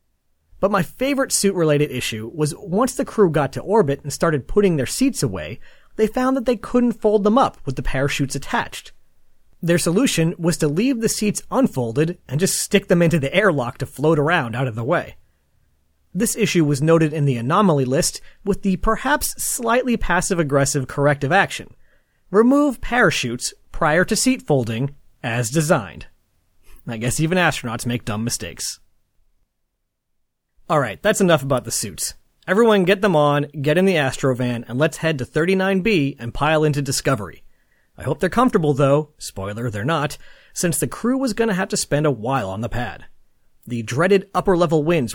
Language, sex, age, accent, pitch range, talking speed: English, male, 30-49, American, 135-195 Hz, 175 wpm